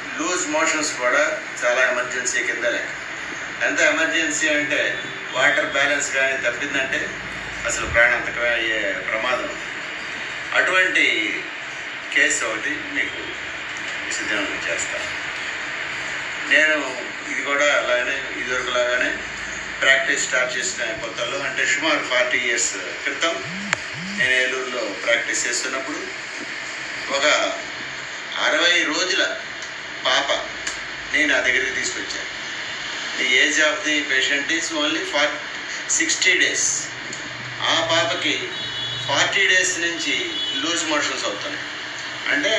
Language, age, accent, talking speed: Telugu, 50-69, native, 95 wpm